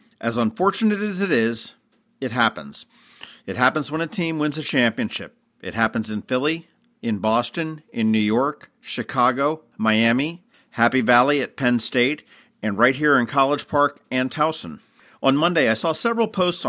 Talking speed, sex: 160 wpm, male